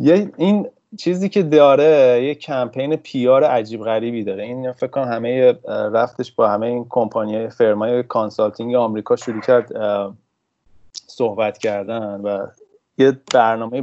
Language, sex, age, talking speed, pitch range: Persian, male, 30-49, 130 wpm, 110-135 Hz